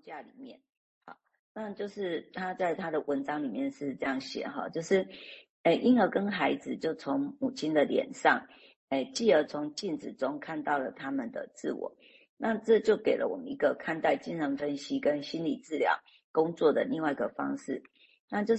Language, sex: Chinese, female